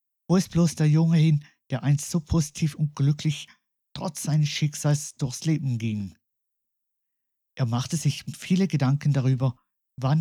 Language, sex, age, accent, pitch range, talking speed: German, male, 50-69, German, 120-155 Hz, 145 wpm